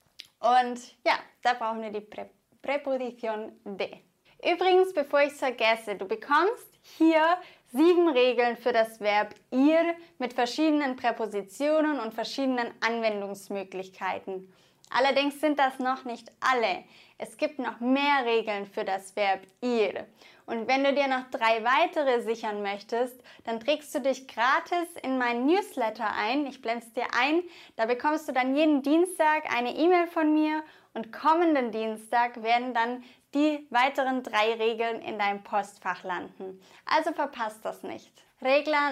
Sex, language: female, English